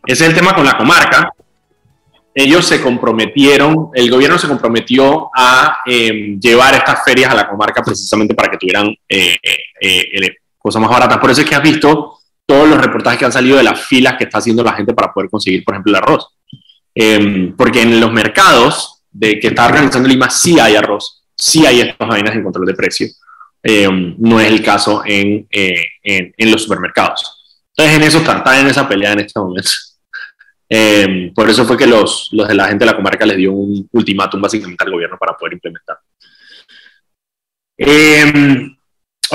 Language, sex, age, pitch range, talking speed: Spanish, male, 20-39, 105-135 Hz, 190 wpm